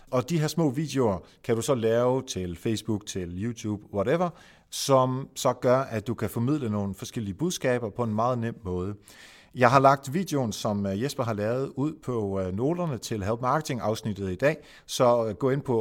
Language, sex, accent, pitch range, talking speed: Danish, male, native, 105-140 Hz, 190 wpm